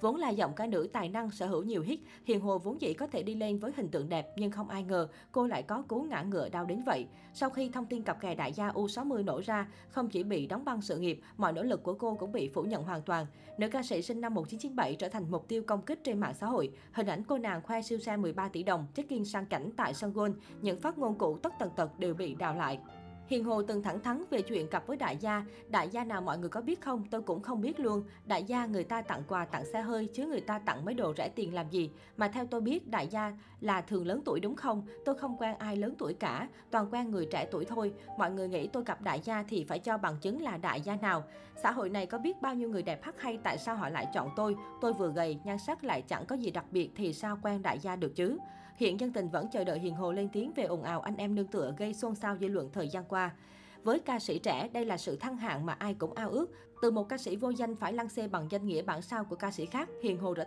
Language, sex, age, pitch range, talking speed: Vietnamese, female, 20-39, 180-230 Hz, 285 wpm